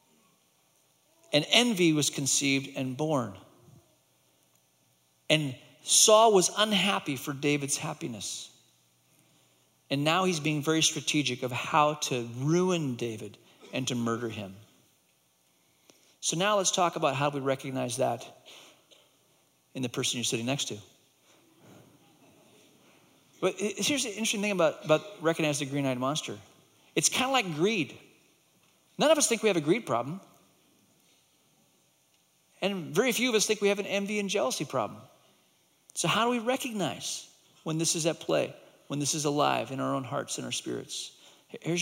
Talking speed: 150 wpm